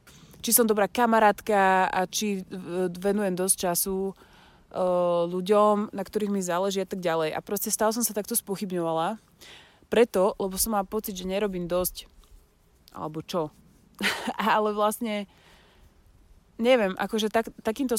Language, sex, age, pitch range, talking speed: Slovak, female, 20-39, 175-205 Hz, 130 wpm